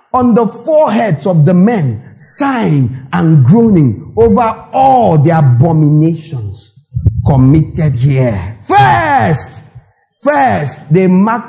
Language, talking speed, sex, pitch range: English, 100 wpm, male, 135-195 Hz